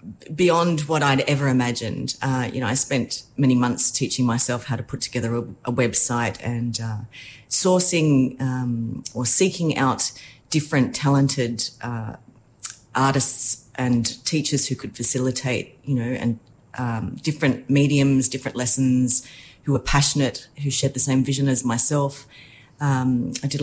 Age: 40-59